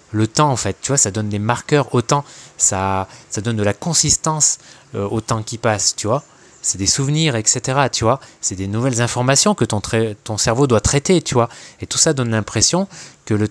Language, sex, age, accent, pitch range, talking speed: French, male, 20-39, French, 105-140 Hz, 225 wpm